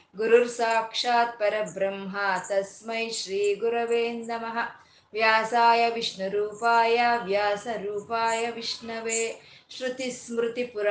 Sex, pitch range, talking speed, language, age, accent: female, 210-240 Hz, 60 wpm, Kannada, 20-39, native